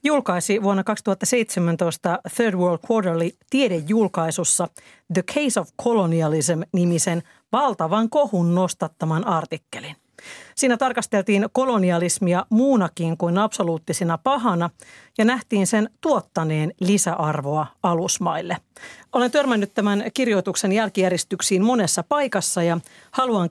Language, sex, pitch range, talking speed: Finnish, female, 170-215 Hz, 90 wpm